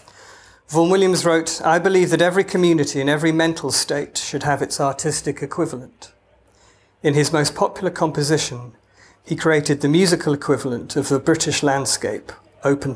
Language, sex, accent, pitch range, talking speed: English, male, British, 130-155 Hz, 150 wpm